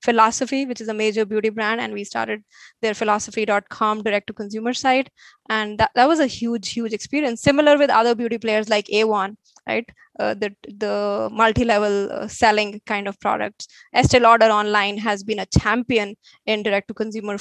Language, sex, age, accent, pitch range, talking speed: English, female, 20-39, Indian, 215-255 Hz, 160 wpm